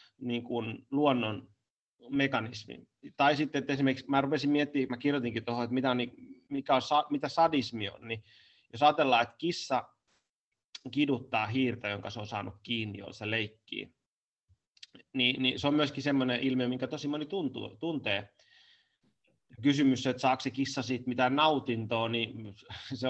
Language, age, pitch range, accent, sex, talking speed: Finnish, 30-49, 115-145 Hz, native, male, 155 wpm